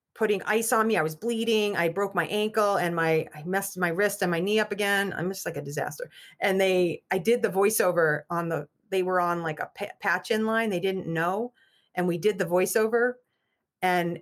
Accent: American